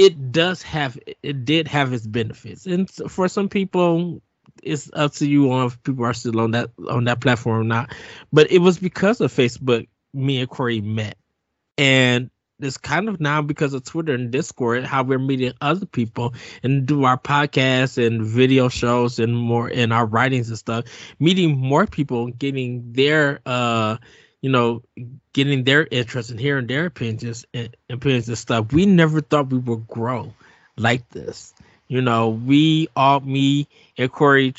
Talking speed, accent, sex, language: 175 wpm, American, male, English